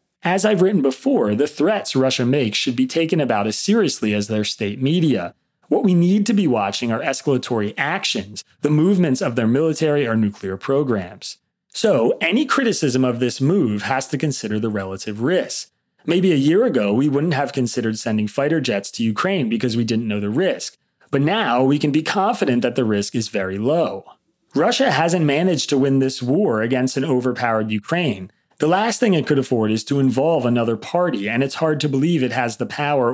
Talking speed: 195 wpm